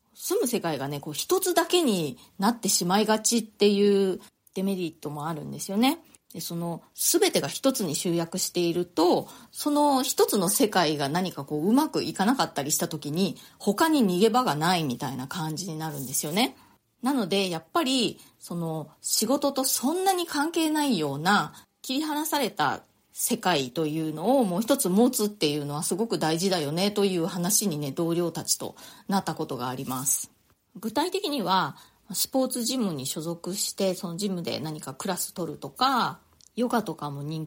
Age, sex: 30-49, female